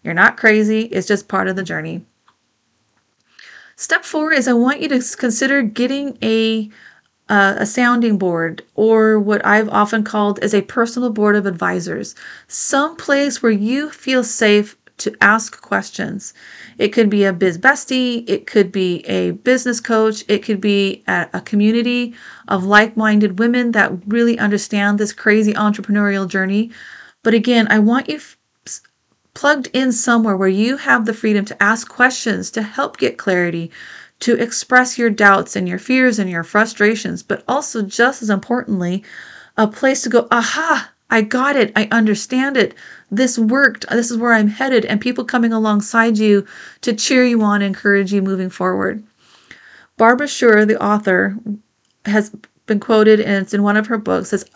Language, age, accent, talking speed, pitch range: English, 30-49, American, 165 wpm, 205-240 Hz